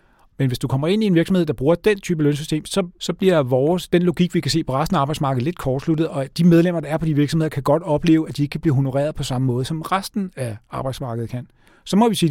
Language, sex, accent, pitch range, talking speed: Danish, male, native, 130-160 Hz, 280 wpm